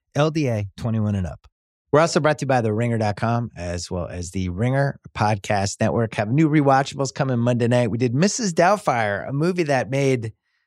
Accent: American